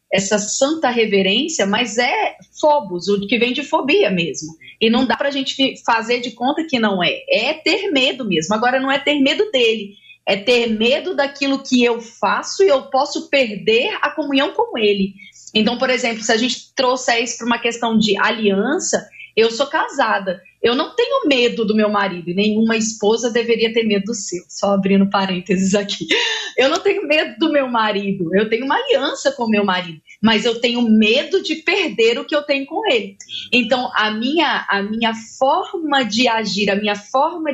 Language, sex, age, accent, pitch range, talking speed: Portuguese, female, 30-49, Brazilian, 210-290 Hz, 195 wpm